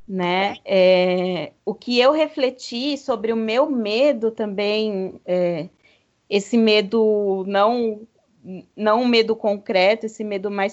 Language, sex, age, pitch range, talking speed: Portuguese, female, 30-49, 215-275 Hz, 105 wpm